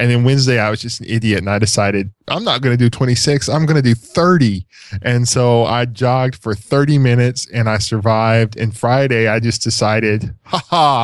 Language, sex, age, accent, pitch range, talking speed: English, male, 10-29, American, 105-120 Hz, 205 wpm